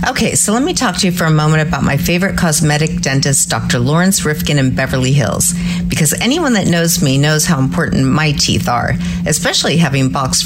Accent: American